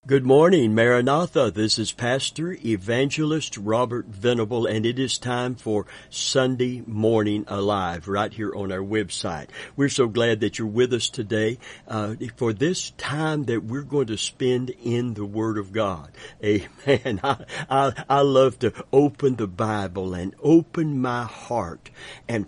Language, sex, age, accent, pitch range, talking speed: English, male, 60-79, American, 105-135 Hz, 155 wpm